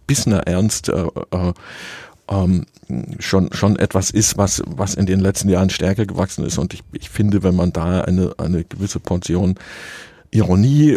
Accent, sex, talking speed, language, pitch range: German, male, 160 wpm, German, 90-100 Hz